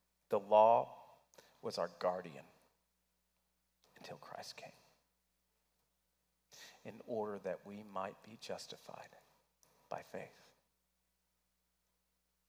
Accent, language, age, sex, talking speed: American, English, 40-59, male, 80 wpm